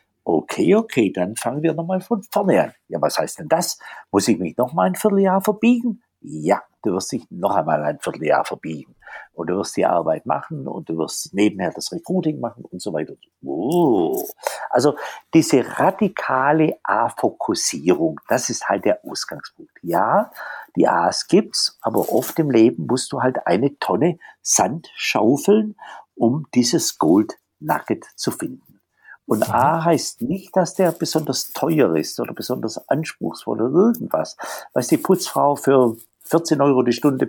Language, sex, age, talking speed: German, male, 60-79, 160 wpm